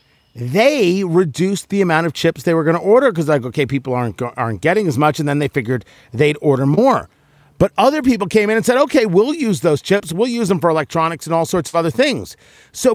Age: 40-59